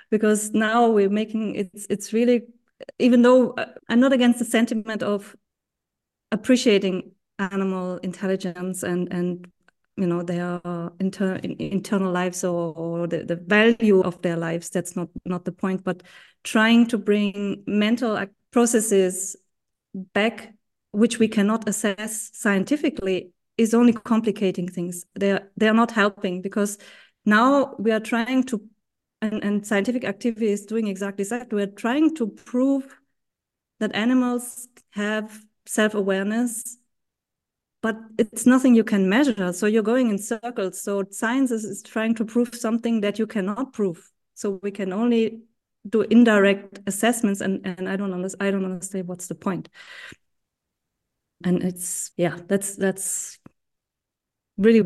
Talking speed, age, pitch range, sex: 145 wpm, 30-49, 190-230 Hz, female